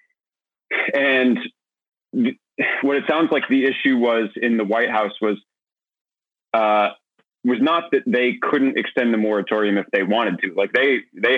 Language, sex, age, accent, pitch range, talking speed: English, male, 30-49, American, 105-120 Hz, 155 wpm